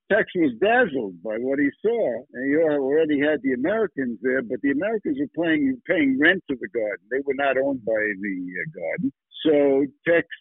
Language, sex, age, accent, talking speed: English, male, 60-79, American, 195 wpm